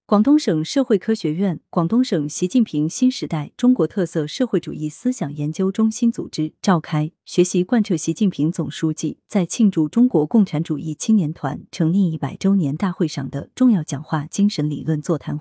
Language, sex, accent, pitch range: Chinese, female, native, 155-225 Hz